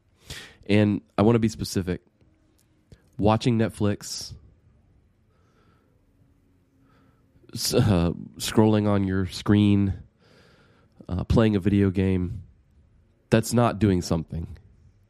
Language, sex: English, male